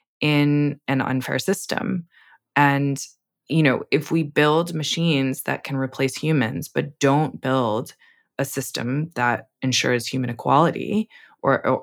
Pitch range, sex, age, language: 125-155 Hz, female, 20-39, English